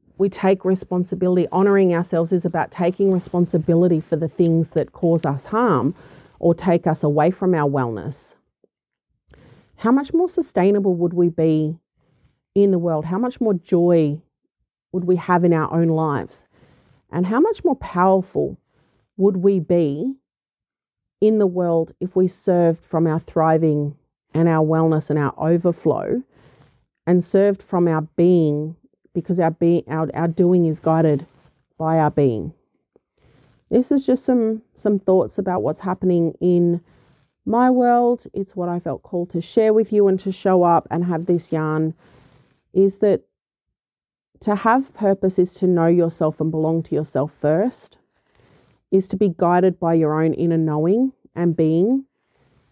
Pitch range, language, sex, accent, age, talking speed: 160-195 Hz, English, female, Australian, 40-59, 155 wpm